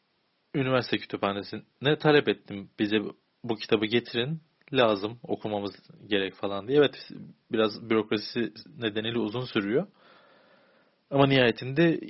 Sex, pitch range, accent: male, 105-150 Hz, native